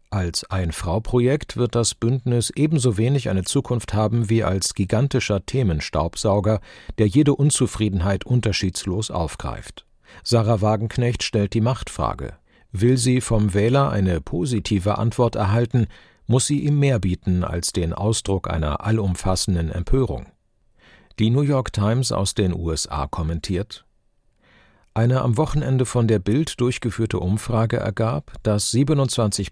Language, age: German, 50-69